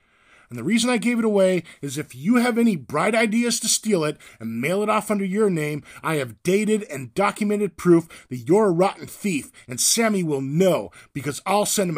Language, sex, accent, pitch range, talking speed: English, male, American, 125-210 Hz, 215 wpm